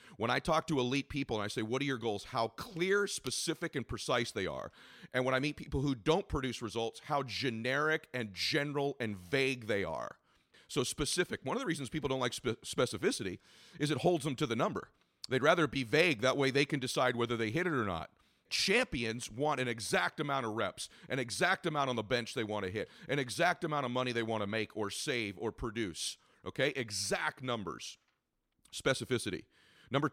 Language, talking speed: English, 205 wpm